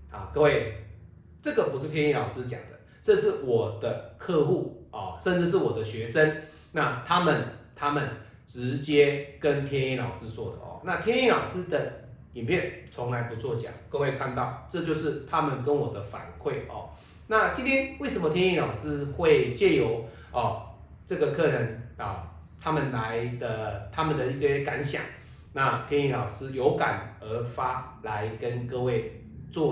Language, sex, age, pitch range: Chinese, male, 30-49, 115-160 Hz